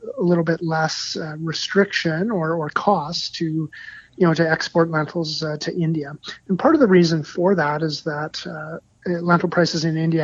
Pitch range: 150-175 Hz